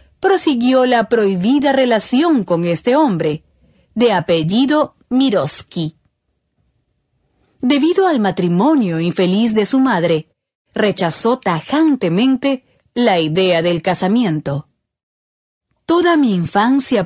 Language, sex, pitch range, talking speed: Spanish, female, 165-255 Hz, 90 wpm